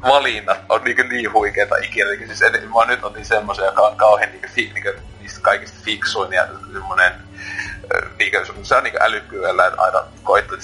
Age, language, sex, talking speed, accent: 30-49, Finnish, male, 180 wpm, native